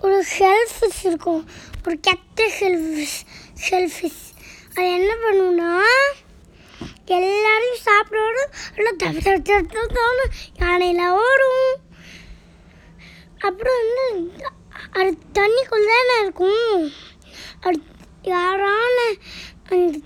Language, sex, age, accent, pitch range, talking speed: Tamil, male, 20-39, native, 355-435 Hz, 70 wpm